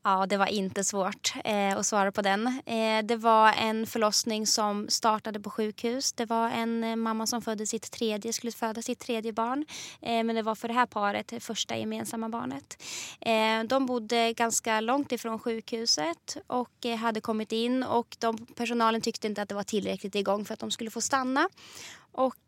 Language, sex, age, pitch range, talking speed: English, female, 20-39, 210-235 Hz, 200 wpm